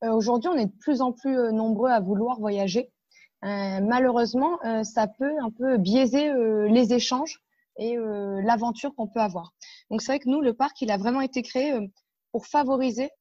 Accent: French